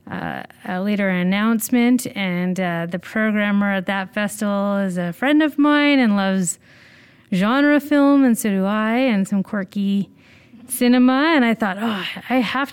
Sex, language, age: female, English, 30-49